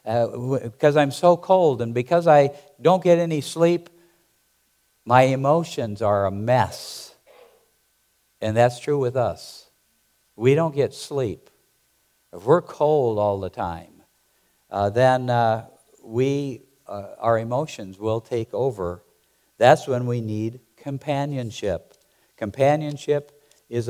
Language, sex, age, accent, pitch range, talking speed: English, male, 60-79, American, 110-145 Hz, 125 wpm